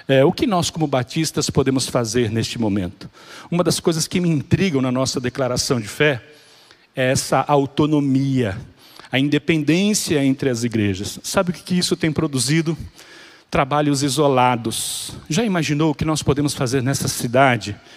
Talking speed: 155 wpm